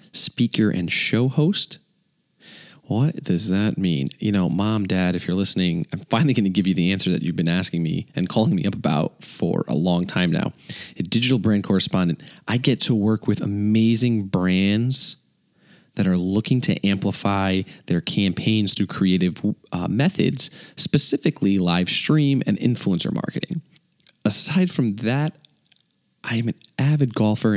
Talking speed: 160 wpm